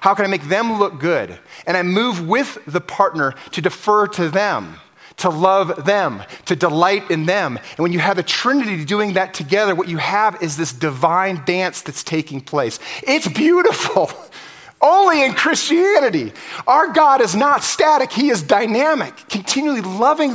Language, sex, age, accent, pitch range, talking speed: English, male, 30-49, American, 150-210 Hz, 170 wpm